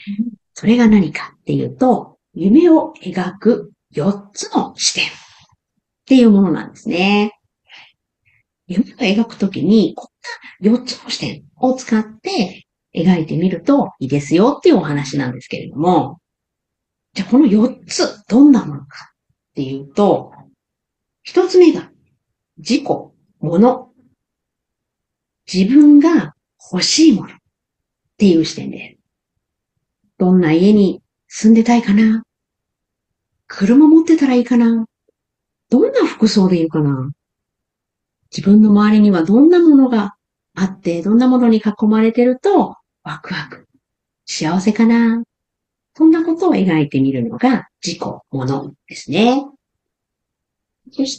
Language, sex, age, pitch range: Japanese, female, 50-69, 165-255 Hz